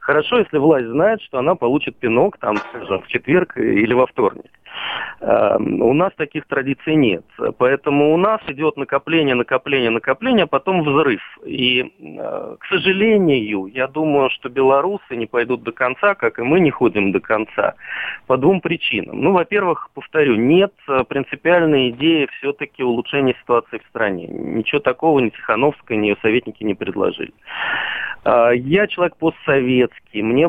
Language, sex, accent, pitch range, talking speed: Russian, male, native, 125-155 Hz, 140 wpm